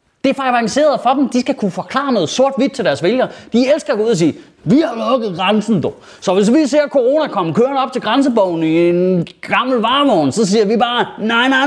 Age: 30-49